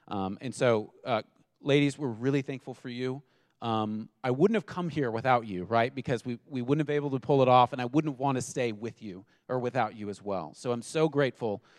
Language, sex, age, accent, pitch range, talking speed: English, male, 30-49, American, 110-140 Hz, 240 wpm